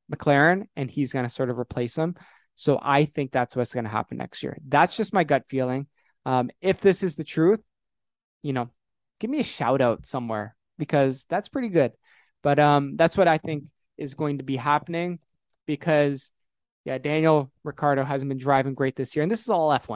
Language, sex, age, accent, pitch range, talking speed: English, male, 20-39, American, 125-155 Hz, 205 wpm